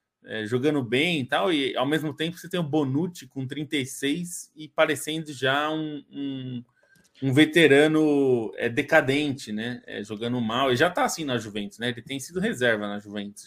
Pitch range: 120-165 Hz